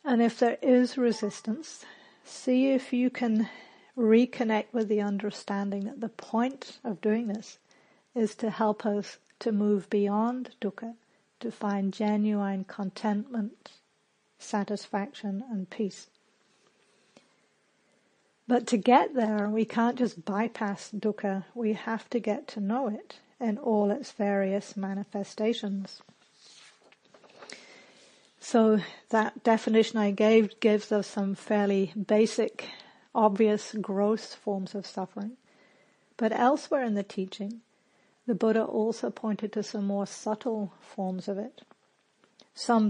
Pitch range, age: 205-235 Hz, 50-69